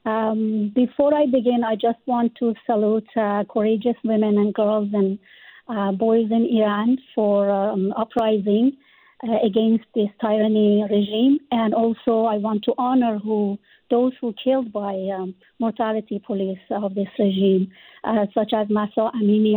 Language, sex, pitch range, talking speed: English, female, 210-245 Hz, 150 wpm